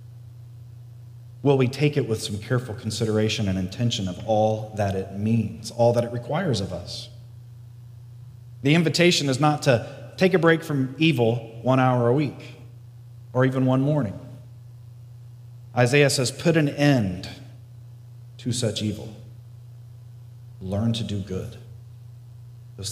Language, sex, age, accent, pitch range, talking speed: English, male, 30-49, American, 120-150 Hz, 135 wpm